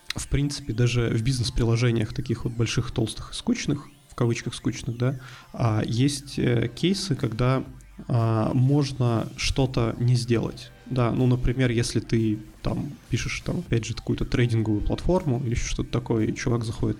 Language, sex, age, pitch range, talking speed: Russian, male, 20-39, 115-135 Hz, 145 wpm